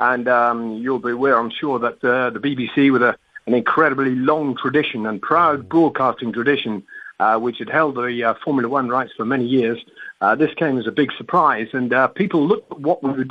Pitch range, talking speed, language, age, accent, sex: 125-165 Hz, 210 wpm, English, 50-69, British, male